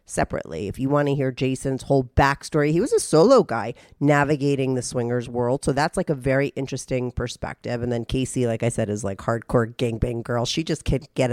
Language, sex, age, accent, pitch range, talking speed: English, female, 30-49, American, 125-180 Hz, 210 wpm